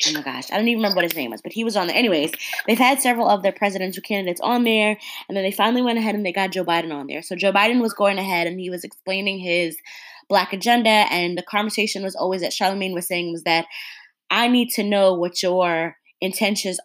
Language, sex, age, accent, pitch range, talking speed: English, female, 20-39, American, 175-205 Hz, 250 wpm